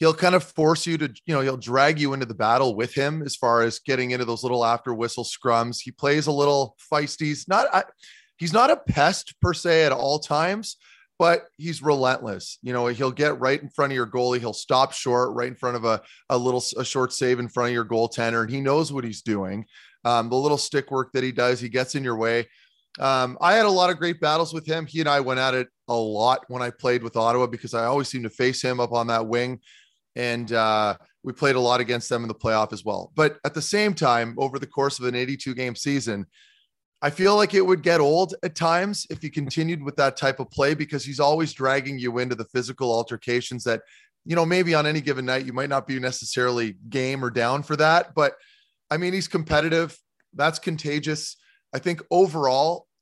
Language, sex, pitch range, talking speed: English, male, 120-150 Hz, 235 wpm